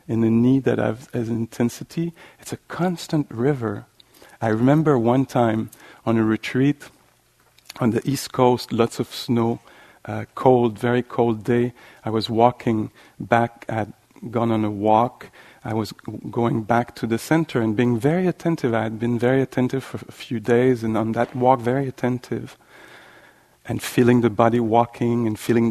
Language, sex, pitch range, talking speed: English, male, 115-135 Hz, 175 wpm